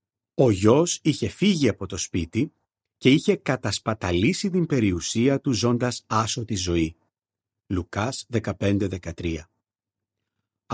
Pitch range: 100-120 Hz